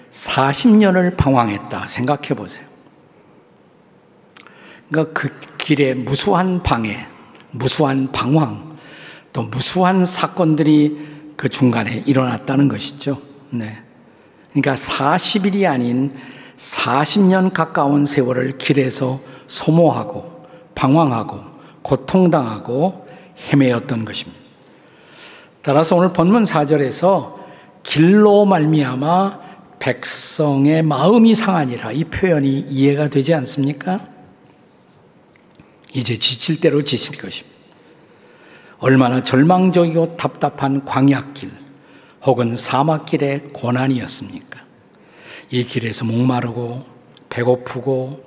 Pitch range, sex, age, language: 125-160 Hz, male, 50-69, Korean